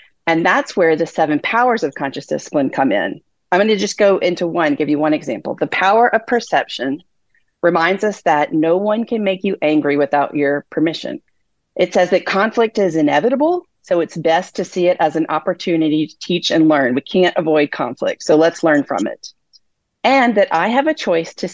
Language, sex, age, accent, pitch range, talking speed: English, female, 40-59, American, 165-220 Hz, 200 wpm